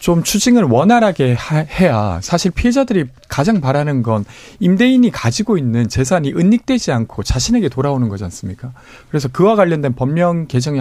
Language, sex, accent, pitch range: Korean, male, native, 115-195 Hz